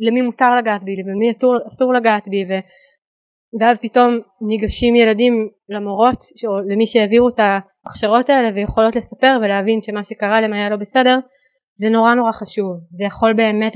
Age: 20-39